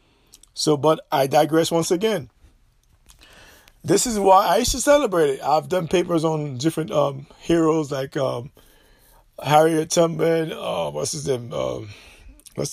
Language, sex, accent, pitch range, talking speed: English, male, American, 150-195 Hz, 140 wpm